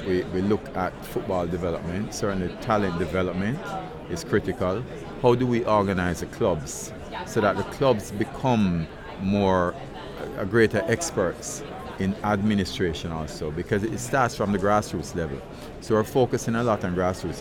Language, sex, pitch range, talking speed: English, male, 90-110 Hz, 145 wpm